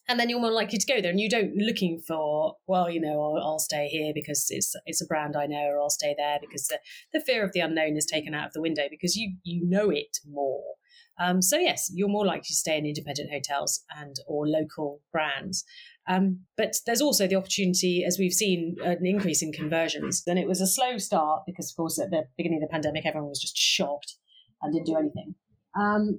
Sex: female